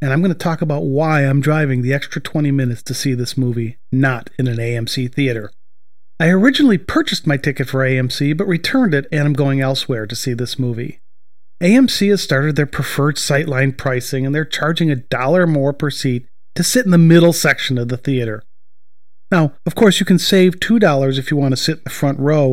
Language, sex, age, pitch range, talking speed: English, male, 40-59, 130-175 Hz, 215 wpm